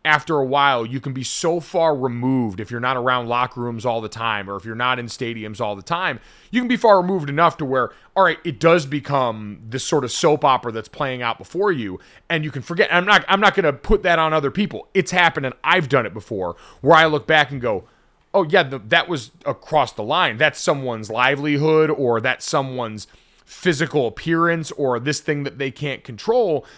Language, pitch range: English, 125-160 Hz